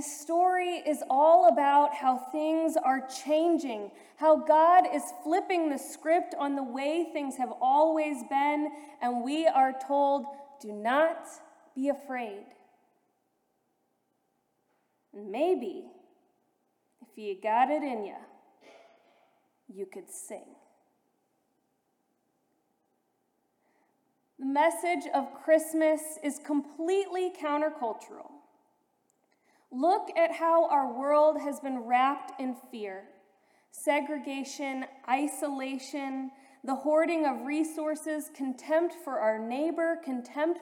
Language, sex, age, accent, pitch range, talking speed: English, female, 20-39, American, 265-325 Hz, 100 wpm